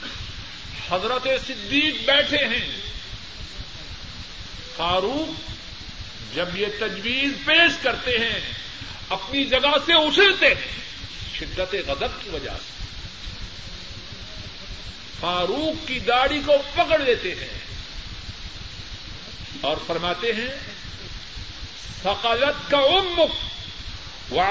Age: 50-69